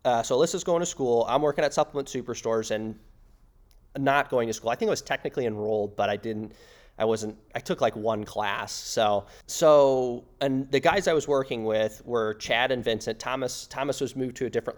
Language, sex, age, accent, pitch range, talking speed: English, male, 20-39, American, 110-140 Hz, 210 wpm